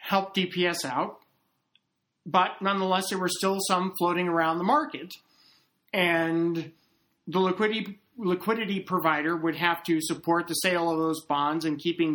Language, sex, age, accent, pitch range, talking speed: English, male, 50-69, American, 165-215 Hz, 145 wpm